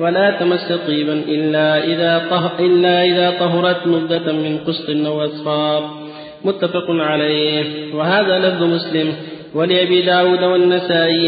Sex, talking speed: male, 110 wpm